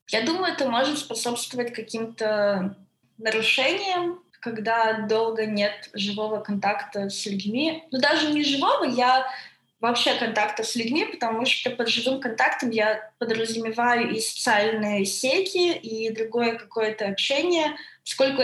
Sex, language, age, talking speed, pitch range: female, Russian, 20-39, 125 wpm, 210-250 Hz